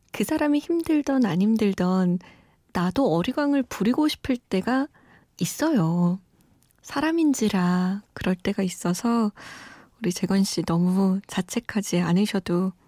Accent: native